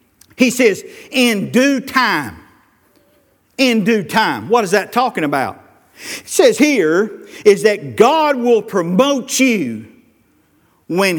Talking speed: 125 wpm